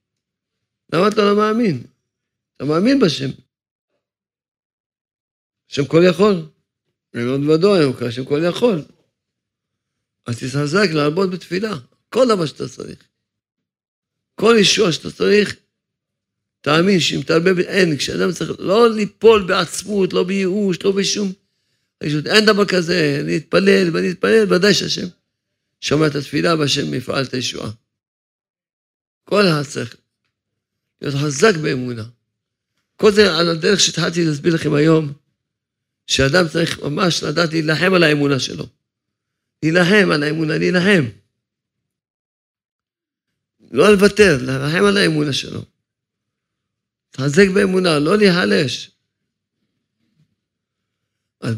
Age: 50-69